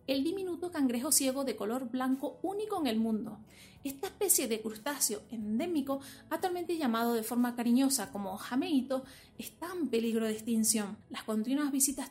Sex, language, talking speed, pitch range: female, Spanish, 155 wpm, 225-290 Hz